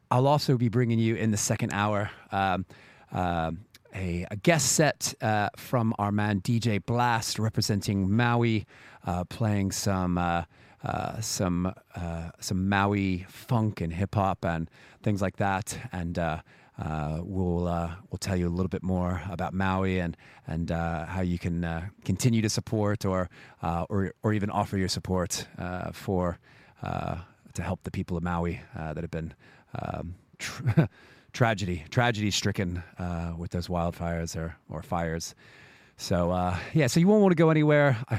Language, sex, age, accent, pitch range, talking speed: English, male, 30-49, American, 90-120 Hz, 170 wpm